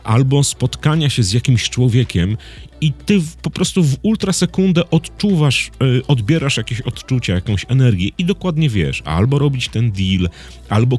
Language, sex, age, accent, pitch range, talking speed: Polish, male, 30-49, native, 95-145 Hz, 155 wpm